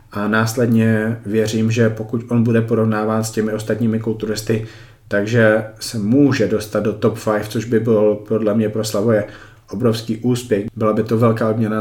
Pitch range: 105-115 Hz